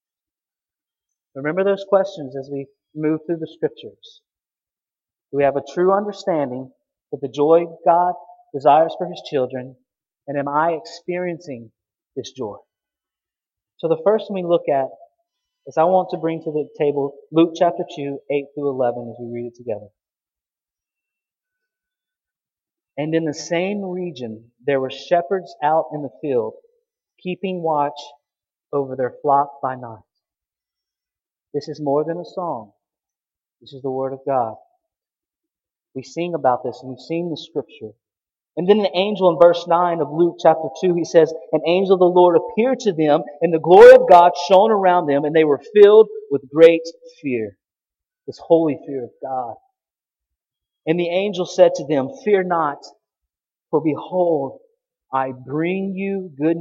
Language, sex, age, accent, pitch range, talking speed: English, male, 30-49, American, 140-190 Hz, 160 wpm